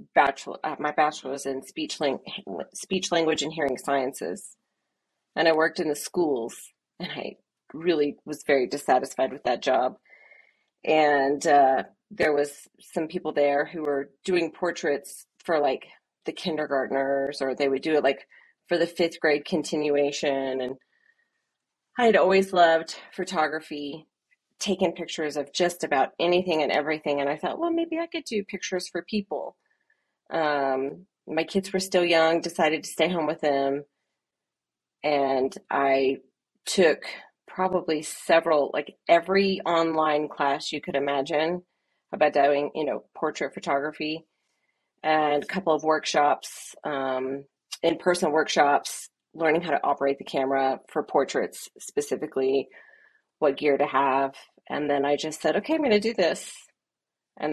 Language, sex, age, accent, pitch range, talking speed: English, female, 30-49, American, 140-180 Hz, 145 wpm